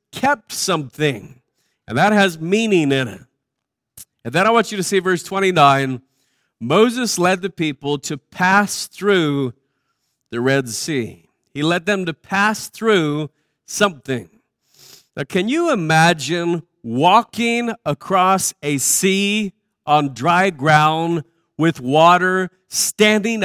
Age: 50-69